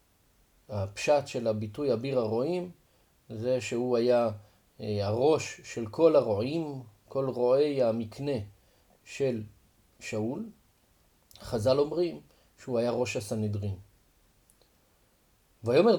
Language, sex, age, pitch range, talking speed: Hebrew, male, 40-59, 105-140 Hz, 90 wpm